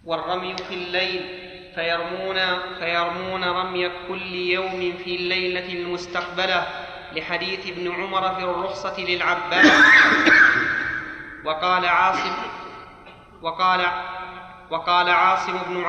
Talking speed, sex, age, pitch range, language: 85 wpm, male, 30-49, 180-185 Hz, Arabic